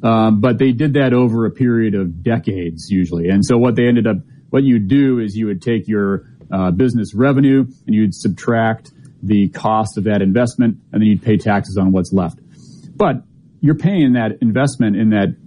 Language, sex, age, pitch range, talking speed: English, male, 30-49, 105-130 Hz, 200 wpm